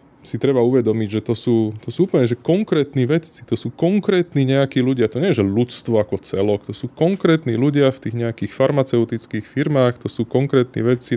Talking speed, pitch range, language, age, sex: 185 wpm, 105-125 Hz, Slovak, 20-39, male